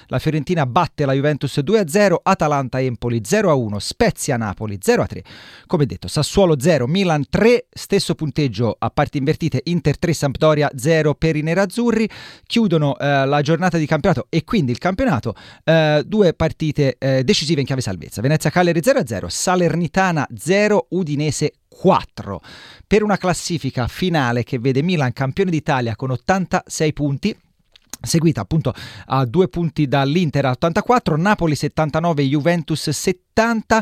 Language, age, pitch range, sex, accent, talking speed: Italian, 40-59, 130-180 Hz, male, native, 130 wpm